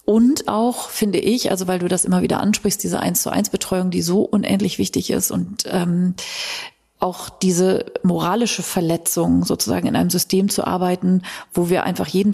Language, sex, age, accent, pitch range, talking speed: German, female, 40-59, German, 185-210 Hz, 165 wpm